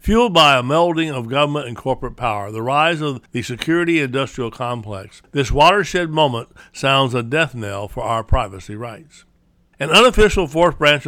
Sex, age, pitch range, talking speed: male, 60-79, 115-155 Hz, 170 wpm